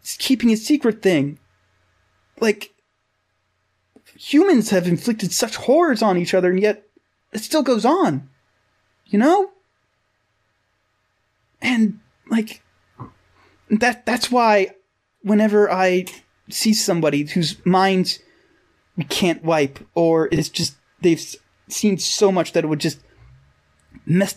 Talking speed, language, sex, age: 120 wpm, English, male, 30-49